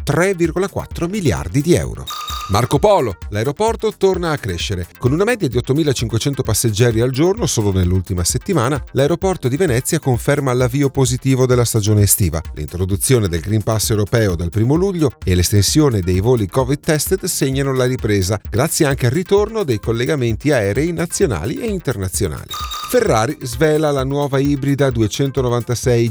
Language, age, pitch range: Italian, 40-59, 115-165 Hz